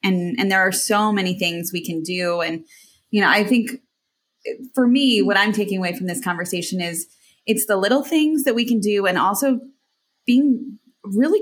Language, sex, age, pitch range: English, female, 20-39, 185-230 Hz